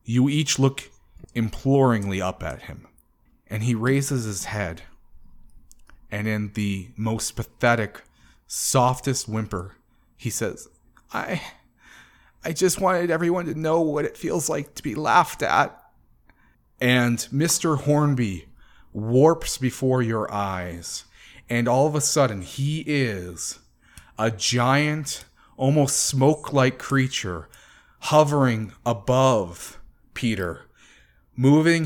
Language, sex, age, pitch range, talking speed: English, male, 30-49, 105-140 Hz, 110 wpm